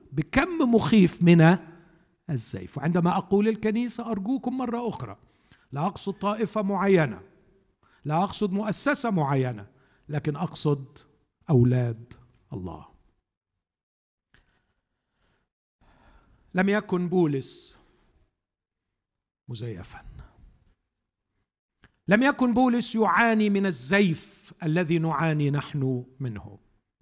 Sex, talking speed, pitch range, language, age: male, 80 wpm, 145-225 Hz, Arabic, 50-69